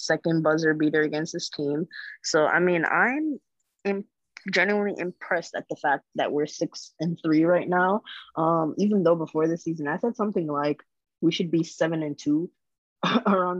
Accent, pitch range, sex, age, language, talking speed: American, 150-180 Hz, female, 20-39, English, 175 wpm